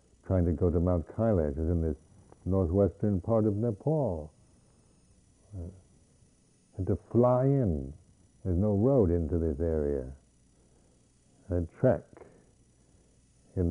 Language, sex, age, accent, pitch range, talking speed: English, male, 60-79, American, 75-100 Hz, 125 wpm